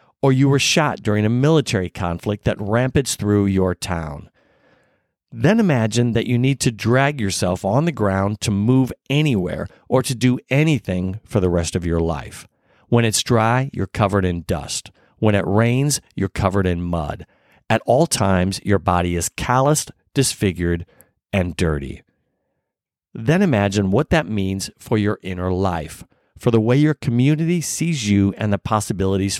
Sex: male